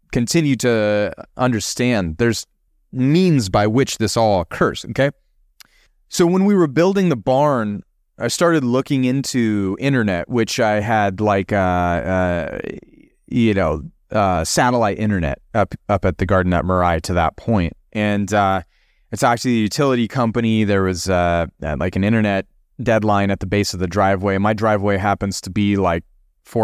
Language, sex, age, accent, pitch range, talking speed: English, male, 30-49, American, 100-125 Hz, 160 wpm